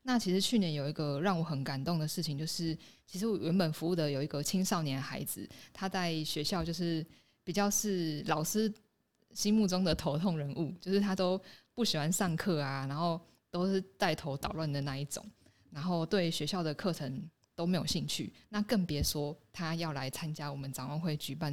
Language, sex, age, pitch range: Chinese, female, 20-39, 150-190 Hz